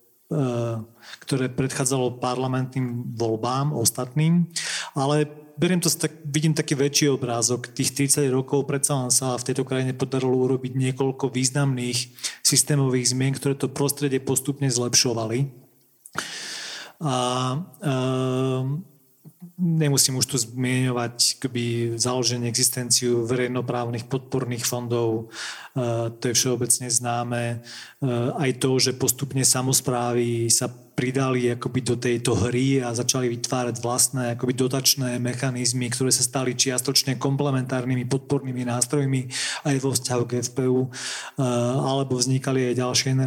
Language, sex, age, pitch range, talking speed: Slovak, male, 40-59, 125-140 Hz, 120 wpm